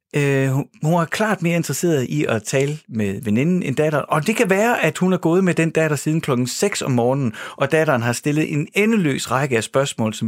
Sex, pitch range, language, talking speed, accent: male, 120-170 Hz, Danish, 230 wpm, native